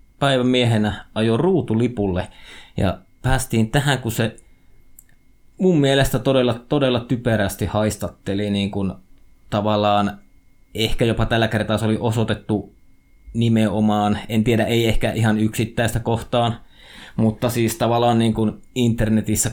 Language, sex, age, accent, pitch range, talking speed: Finnish, male, 20-39, native, 100-125 Hz, 115 wpm